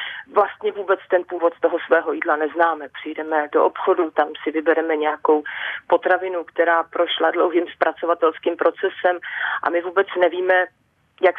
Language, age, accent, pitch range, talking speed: Czech, 40-59, native, 170-255 Hz, 135 wpm